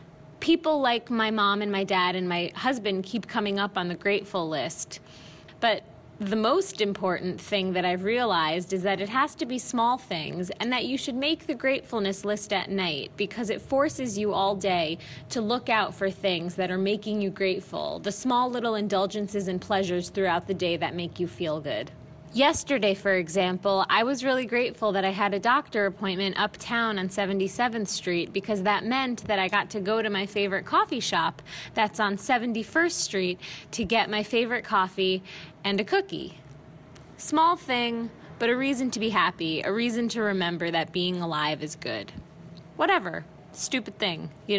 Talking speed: 185 wpm